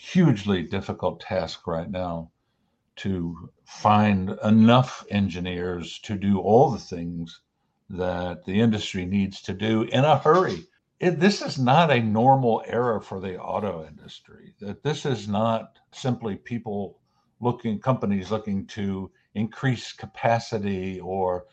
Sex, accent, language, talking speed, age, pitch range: male, American, English, 125 wpm, 60-79, 100-130 Hz